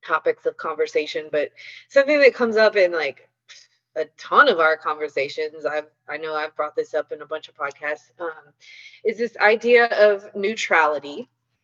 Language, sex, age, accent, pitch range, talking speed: English, female, 30-49, American, 165-255 Hz, 170 wpm